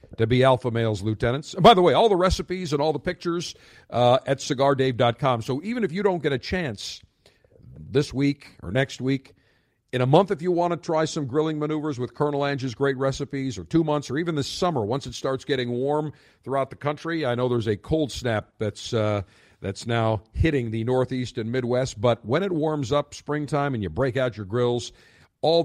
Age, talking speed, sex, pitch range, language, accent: 50-69, 210 wpm, male, 110-150 Hz, English, American